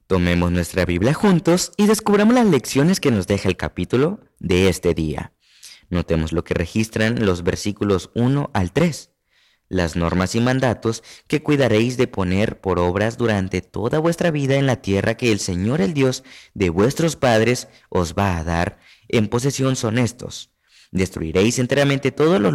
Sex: male